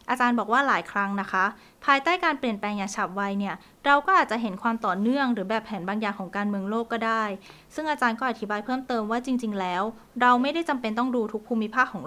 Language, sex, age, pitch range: Thai, female, 20-39, 200-255 Hz